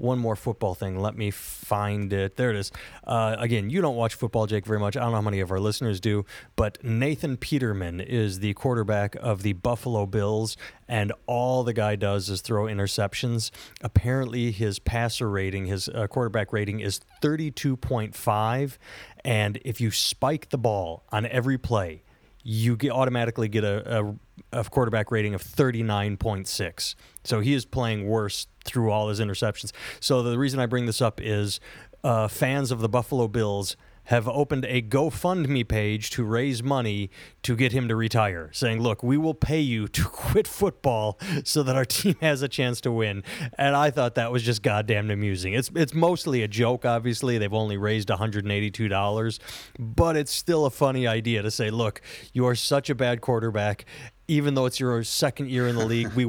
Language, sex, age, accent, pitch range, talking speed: English, male, 30-49, American, 105-125 Hz, 185 wpm